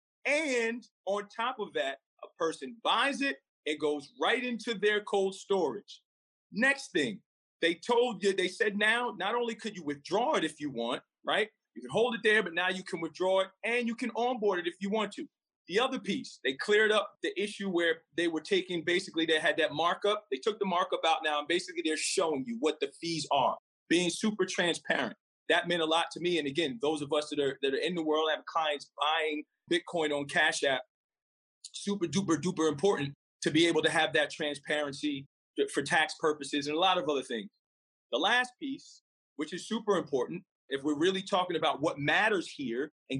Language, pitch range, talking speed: English, 155-215 Hz, 205 wpm